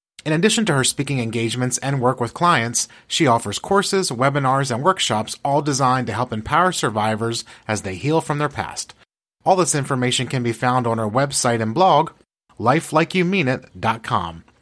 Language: English